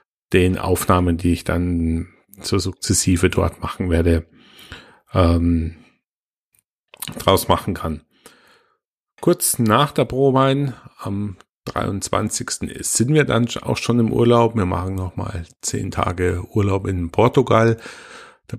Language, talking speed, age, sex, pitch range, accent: German, 125 wpm, 40-59, male, 90-120 Hz, German